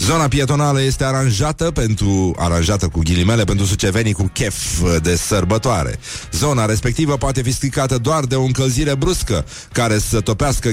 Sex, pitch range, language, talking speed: male, 95-130 Hz, Romanian, 150 wpm